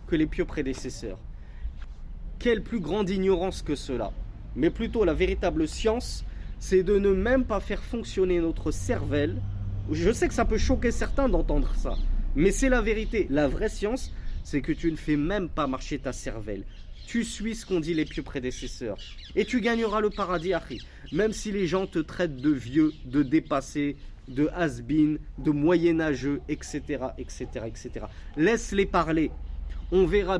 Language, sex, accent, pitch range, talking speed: French, male, French, 145-205 Hz, 170 wpm